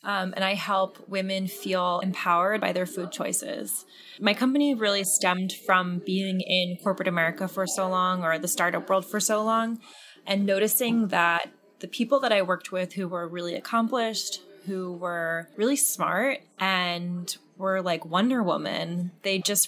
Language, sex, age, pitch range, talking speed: English, female, 20-39, 175-200 Hz, 165 wpm